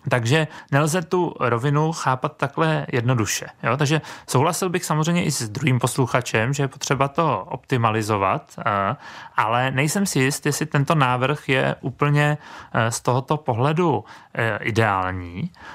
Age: 30-49